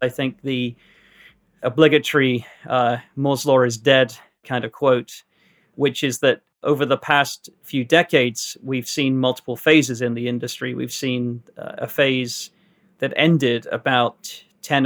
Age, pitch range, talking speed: 30-49, 125-145 Hz, 145 wpm